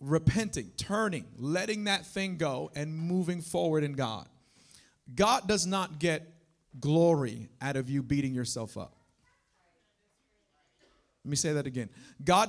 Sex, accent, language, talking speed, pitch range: male, American, English, 135 wpm, 135-175 Hz